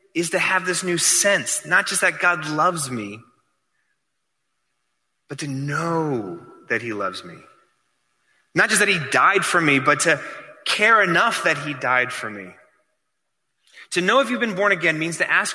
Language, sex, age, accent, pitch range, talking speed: English, male, 30-49, American, 155-200 Hz, 175 wpm